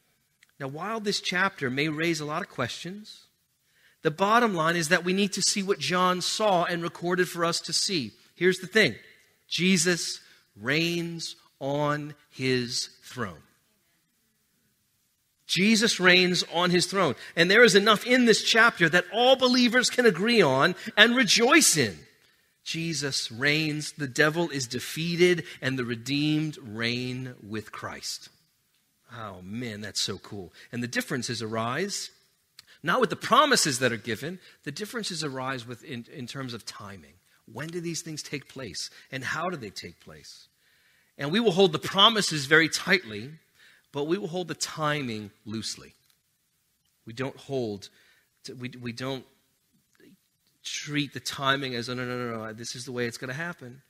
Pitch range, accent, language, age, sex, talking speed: 125-180 Hz, American, English, 40-59, male, 155 wpm